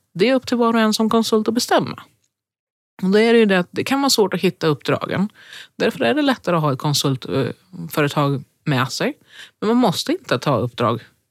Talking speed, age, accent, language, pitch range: 220 wpm, 30-49, native, Swedish, 140-205 Hz